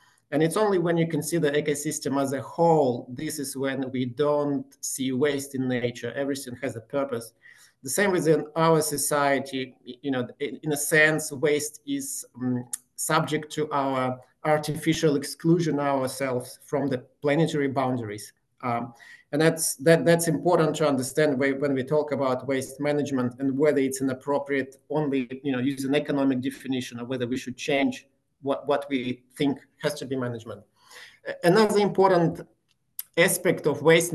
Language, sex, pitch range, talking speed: English, male, 130-155 Hz, 160 wpm